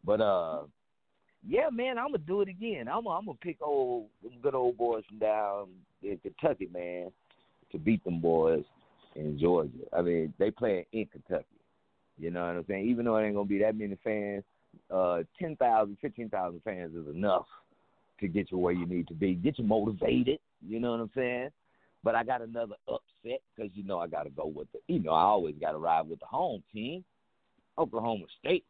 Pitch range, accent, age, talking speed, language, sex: 90-130 Hz, American, 50-69, 210 wpm, English, male